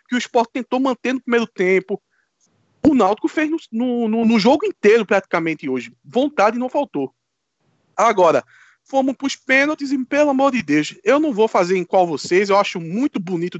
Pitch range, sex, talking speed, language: 190-270 Hz, male, 190 wpm, Portuguese